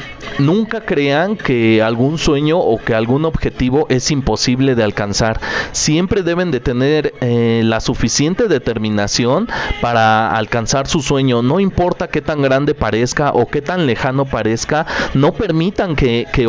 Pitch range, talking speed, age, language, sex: 125-155 Hz, 145 wpm, 30-49, Spanish, male